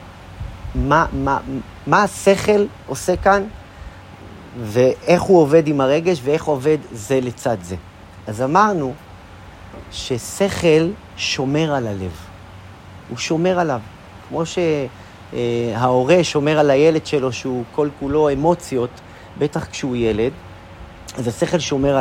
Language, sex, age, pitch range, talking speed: Hebrew, male, 40-59, 100-150 Hz, 110 wpm